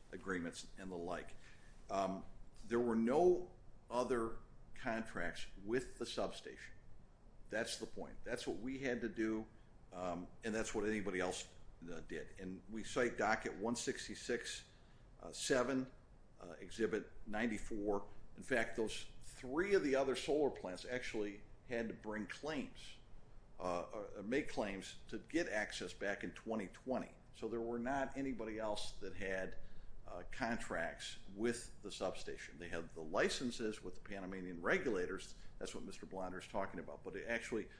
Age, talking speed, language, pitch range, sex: 50-69, 150 wpm, English, 95-120 Hz, male